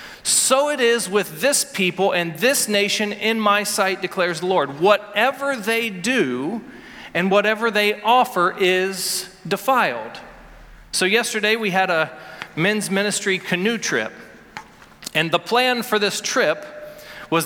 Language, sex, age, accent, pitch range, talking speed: English, male, 40-59, American, 185-230 Hz, 135 wpm